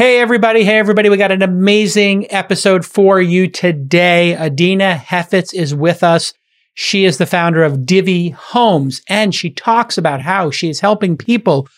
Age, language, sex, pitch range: 40-59, English, male, 165-205 Hz